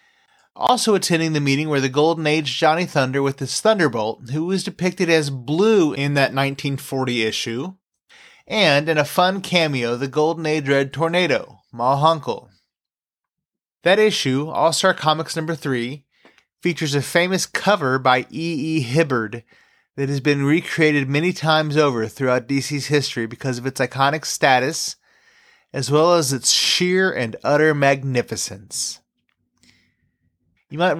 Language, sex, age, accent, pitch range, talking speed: English, male, 30-49, American, 130-160 Hz, 140 wpm